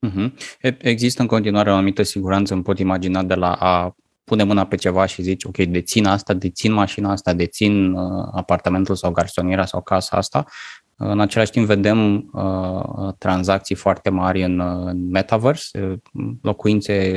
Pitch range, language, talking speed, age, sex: 95-115 Hz, Romanian, 155 wpm, 20-39, male